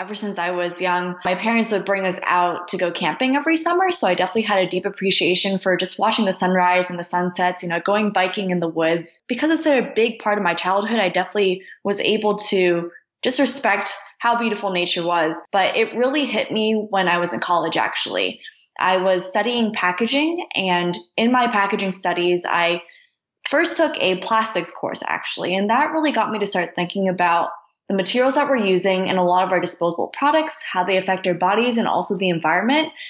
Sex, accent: female, American